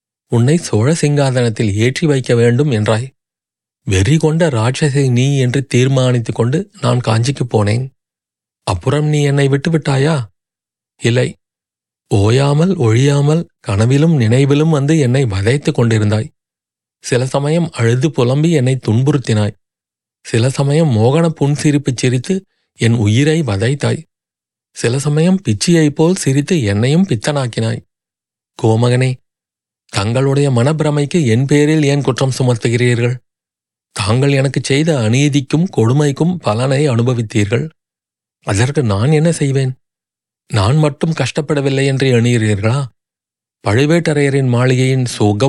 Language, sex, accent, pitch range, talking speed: Tamil, male, native, 115-145 Hz, 100 wpm